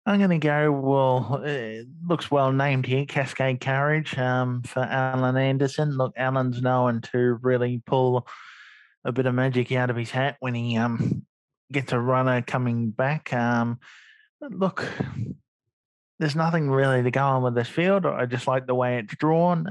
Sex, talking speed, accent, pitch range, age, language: male, 175 wpm, Australian, 115-135 Hz, 20-39, English